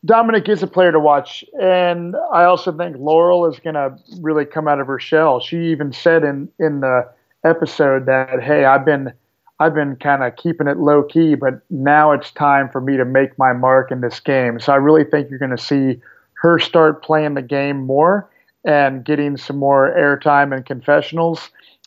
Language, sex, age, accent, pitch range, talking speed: English, male, 40-59, American, 135-165 Hz, 200 wpm